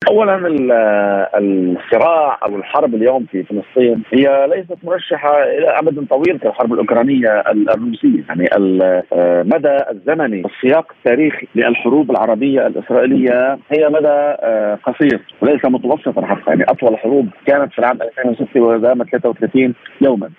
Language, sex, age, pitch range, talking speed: Arabic, male, 40-59, 110-145 Hz, 120 wpm